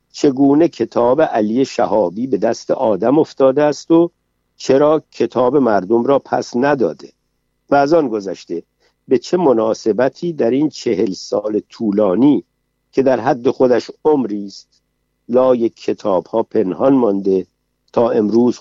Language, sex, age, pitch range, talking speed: Persian, male, 50-69, 100-120 Hz, 130 wpm